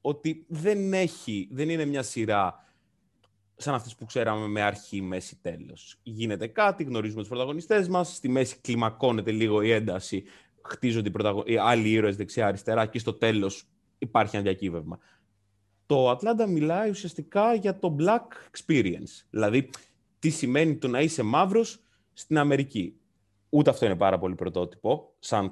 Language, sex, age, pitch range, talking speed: Greek, male, 20-39, 105-155 Hz, 145 wpm